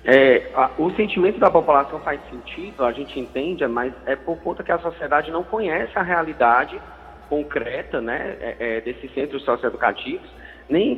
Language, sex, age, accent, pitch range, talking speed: English, male, 20-39, Brazilian, 130-170 Hz, 155 wpm